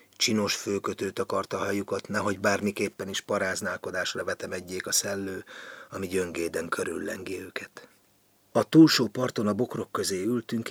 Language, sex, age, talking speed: Hungarian, male, 30-49, 125 wpm